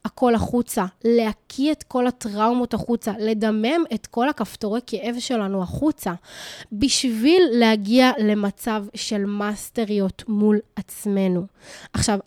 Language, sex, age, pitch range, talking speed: Hebrew, female, 20-39, 200-240 Hz, 110 wpm